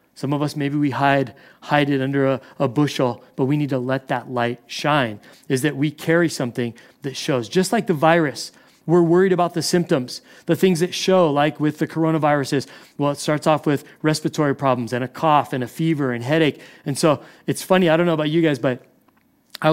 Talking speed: 215 wpm